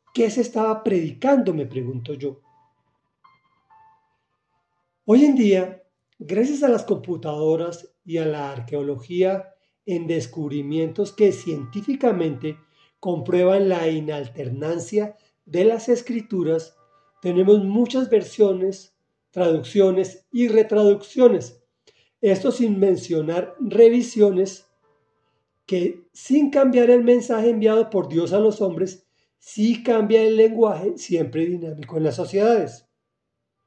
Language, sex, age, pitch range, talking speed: Spanish, male, 40-59, 155-225 Hz, 105 wpm